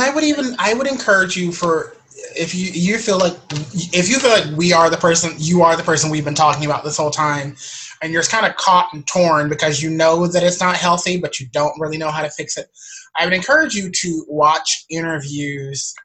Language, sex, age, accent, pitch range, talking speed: English, male, 20-39, American, 150-185 Hz, 230 wpm